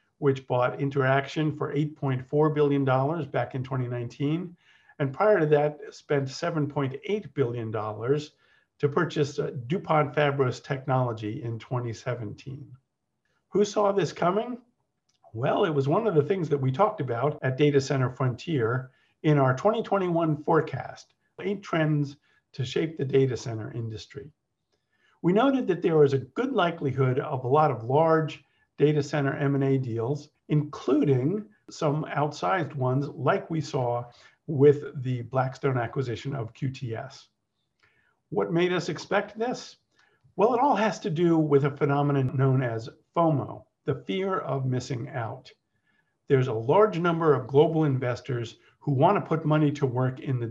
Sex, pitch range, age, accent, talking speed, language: male, 130-155 Hz, 50-69, American, 145 wpm, English